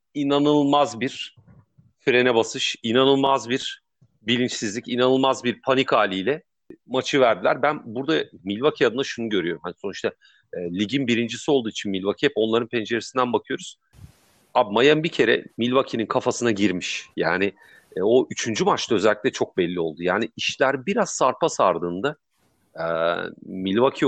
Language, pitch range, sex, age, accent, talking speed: Turkish, 100-130 Hz, male, 40-59, native, 130 wpm